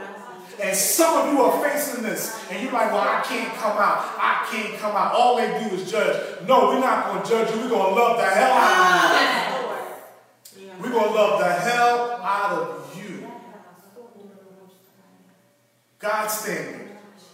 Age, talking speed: 30-49, 175 wpm